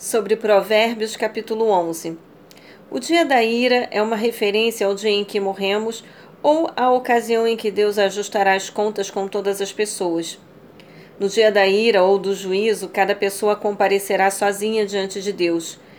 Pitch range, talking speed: 195-225 Hz, 160 wpm